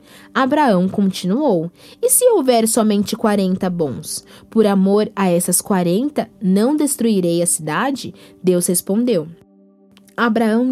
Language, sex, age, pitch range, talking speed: Portuguese, female, 10-29, 170-245 Hz, 110 wpm